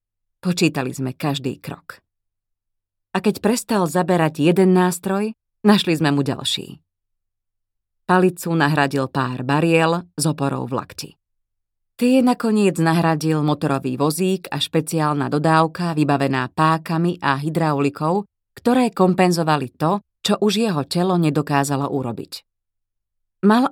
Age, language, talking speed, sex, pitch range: 30-49, Slovak, 110 wpm, female, 125-175 Hz